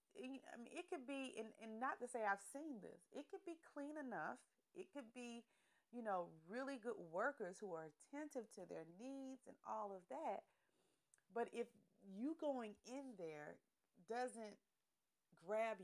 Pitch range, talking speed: 195-280 Hz, 160 wpm